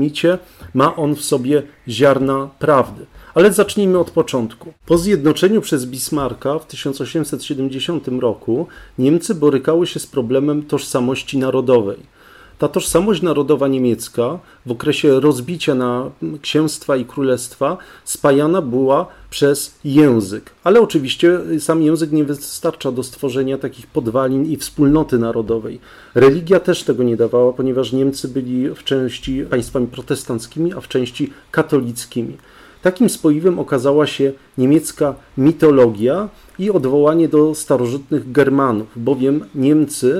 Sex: male